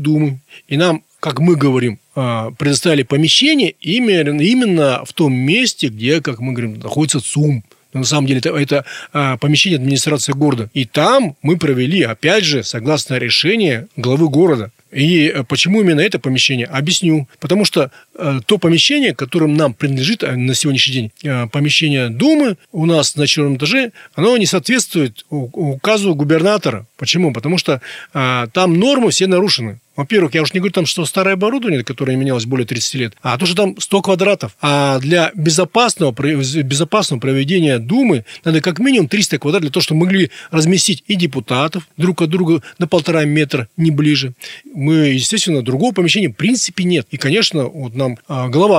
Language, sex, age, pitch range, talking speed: Russian, male, 30-49, 135-185 Hz, 155 wpm